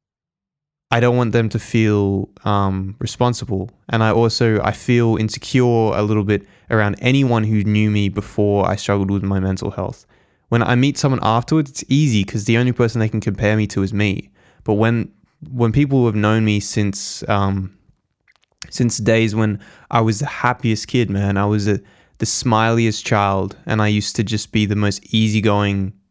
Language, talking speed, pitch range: English, 185 wpm, 100-115 Hz